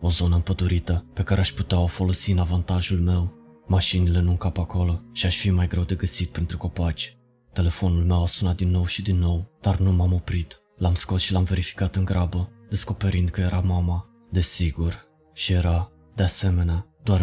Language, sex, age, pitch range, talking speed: Romanian, male, 20-39, 90-95 Hz, 190 wpm